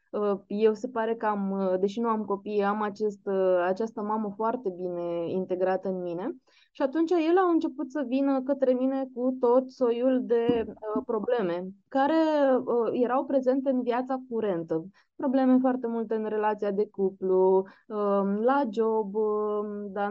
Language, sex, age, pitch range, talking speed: Romanian, female, 20-39, 190-250 Hz, 140 wpm